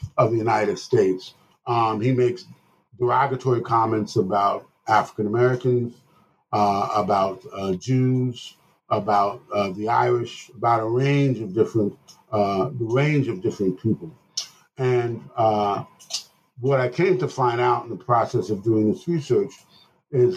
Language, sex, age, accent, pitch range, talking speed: English, male, 50-69, American, 110-130 Hz, 140 wpm